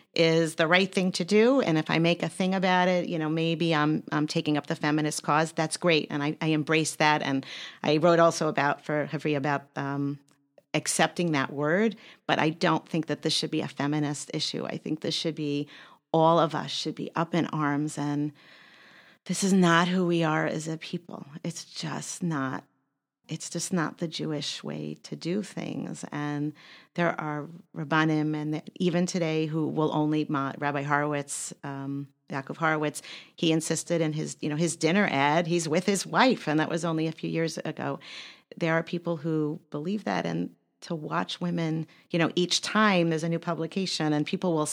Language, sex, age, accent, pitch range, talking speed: English, female, 40-59, American, 150-175 Hz, 195 wpm